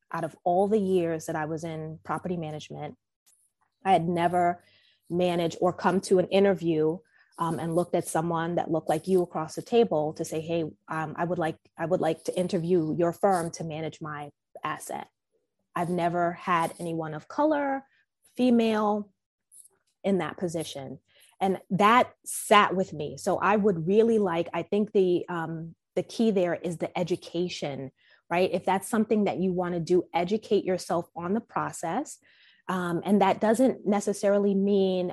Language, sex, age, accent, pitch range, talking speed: English, female, 20-39, American, 170-210 Hz, 170 wpm